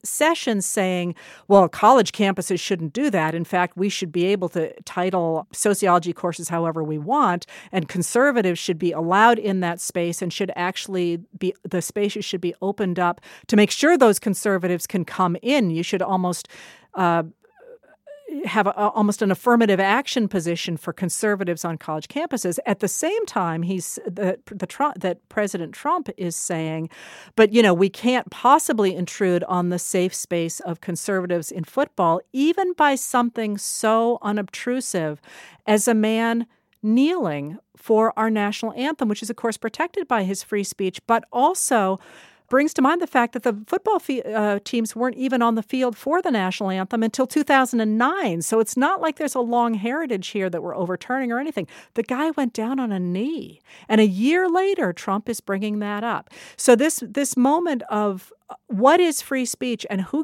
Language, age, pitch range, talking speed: English, 50-69, 185-245 Hz, 175 wpm